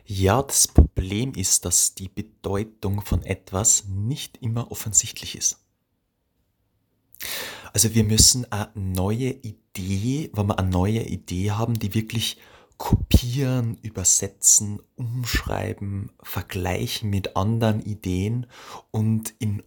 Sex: male